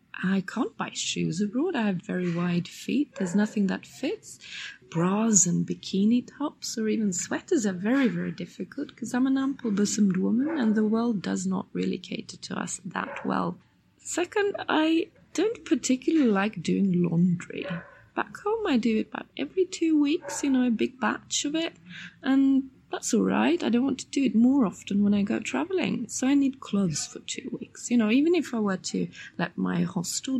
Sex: female